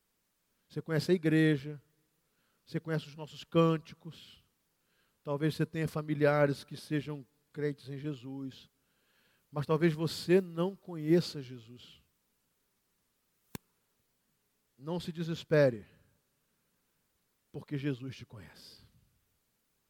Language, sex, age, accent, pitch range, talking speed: Portuguese, male, 50-69, Brazilian, 135-165 Hz, 95 wpm